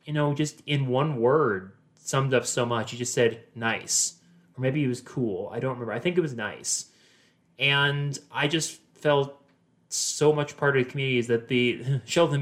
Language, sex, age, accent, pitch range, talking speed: English, male, 20-39, American, 115-140 Hz, 200 wpm